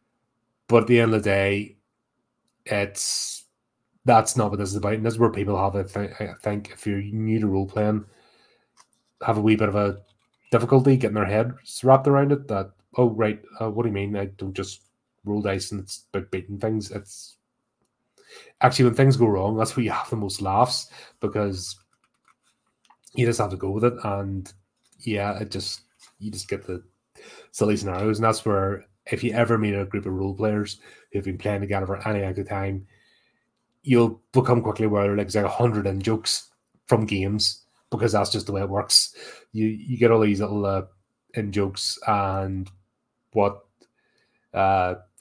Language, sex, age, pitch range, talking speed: English, male, 30-49, 100-115 Hz, 190 wpm